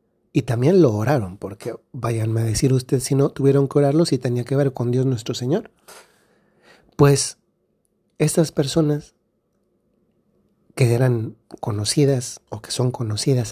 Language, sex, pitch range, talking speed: Spanish, male, 120-150 Hz, 140 wpm